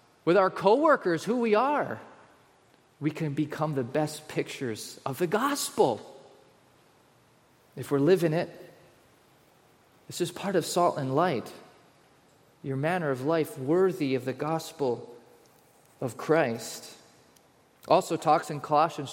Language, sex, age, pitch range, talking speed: English, male, 30-49, 140-170 Hz, 125 wpm